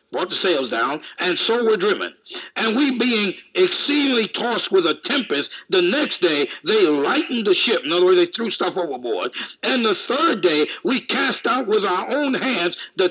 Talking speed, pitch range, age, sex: 190 wpm, 270-370 Hz, 50-69, male